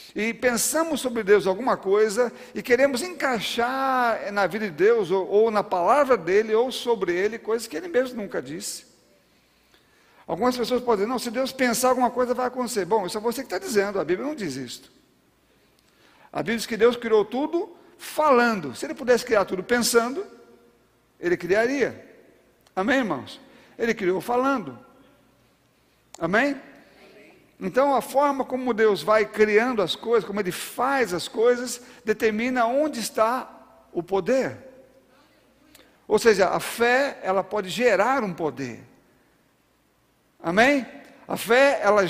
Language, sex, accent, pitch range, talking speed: Portuguese, male, Brazilian, 205-255 Hz, 150 wpm